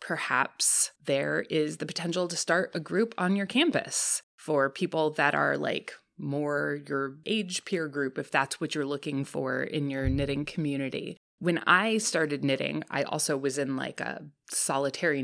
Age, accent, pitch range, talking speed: 20-39, American, 135-165 Hz, 170 wpm